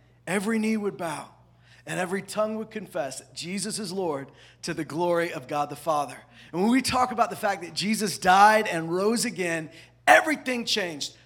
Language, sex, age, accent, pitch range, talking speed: English, male, 40-59, American, 150-205 Hz, 180 wpm